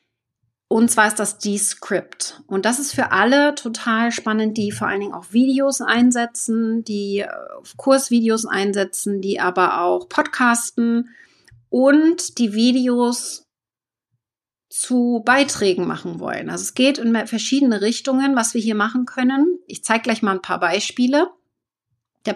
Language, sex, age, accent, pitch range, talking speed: German, female, 30-49, German, 195-255 Hz, 140 wpm